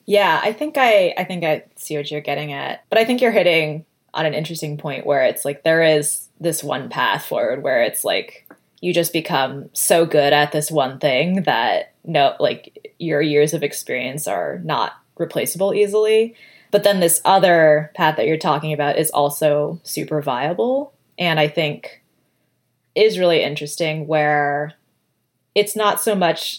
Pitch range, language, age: 150-195 Hz, English, 20-39